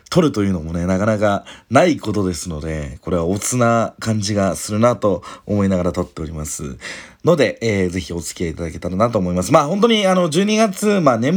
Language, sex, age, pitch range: Japanese, male, 40-59, 95-140 Hz